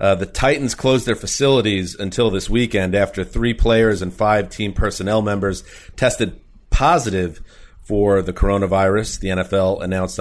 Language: English